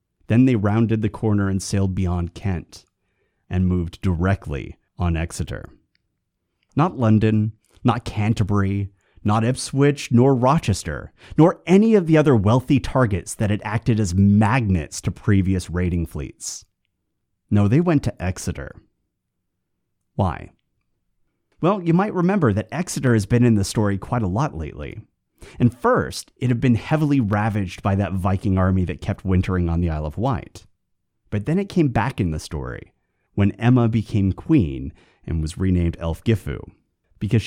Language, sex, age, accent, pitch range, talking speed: English, male, 30-49, American, 90-125 Hz, 150 wpm